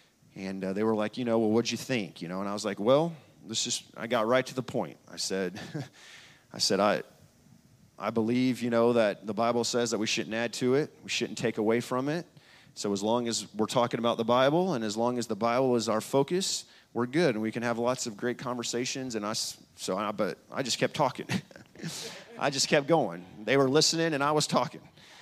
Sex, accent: male, American